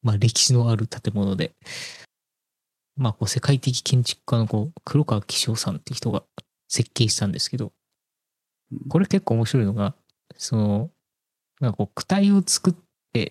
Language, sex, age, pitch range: Japanese, male, 20-39, 105-145 Hz